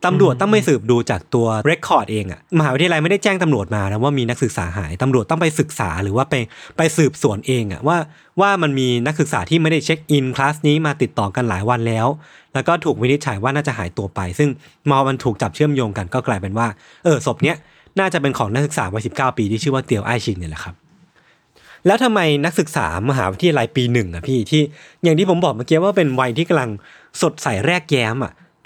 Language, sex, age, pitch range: Thai, male, 20-39, 115-160 Hz